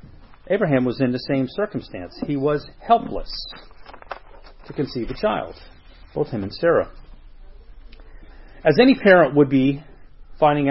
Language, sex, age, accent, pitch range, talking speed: English, male, 40-59, American, 100-135 Hz, 130 wpm